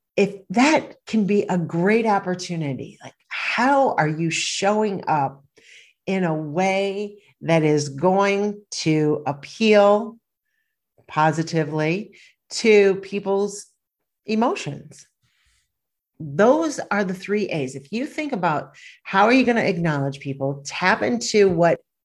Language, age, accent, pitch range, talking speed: English, 50-69, American, 160-205 Hz, 120 wpm